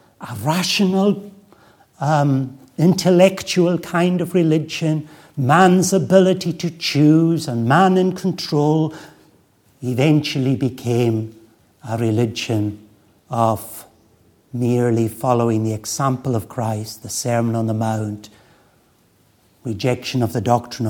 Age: 60-79